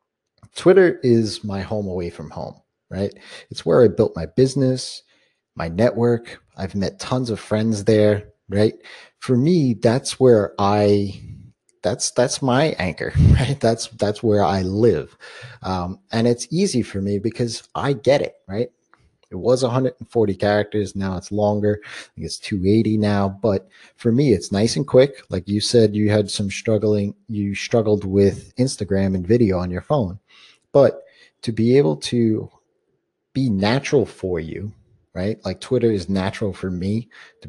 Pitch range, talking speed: 95-120 Hz, 160 wpm